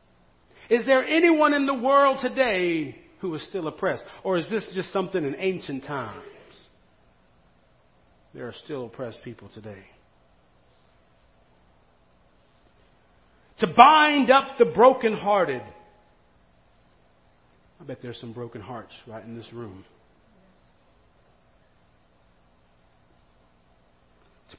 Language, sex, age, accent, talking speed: English, male, 40-59, American, 100 wpm